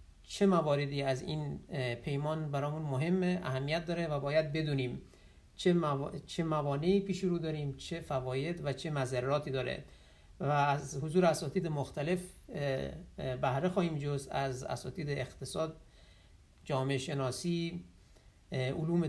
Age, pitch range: 50-69, 125-165 Hz